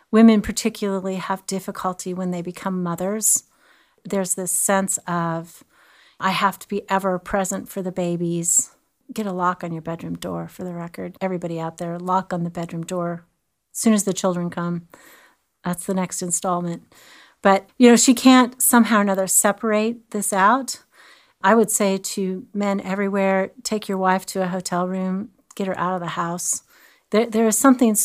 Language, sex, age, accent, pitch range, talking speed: English, female, 40-59, American, 180-205 Hz, 175 wpm